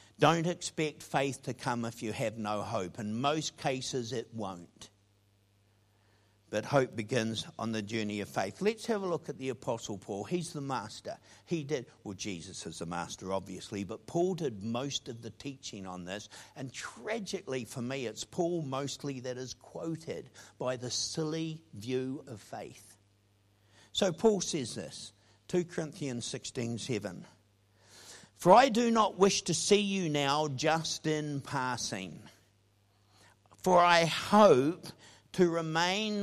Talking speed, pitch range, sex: 150 wpm, 105-165 Hz, male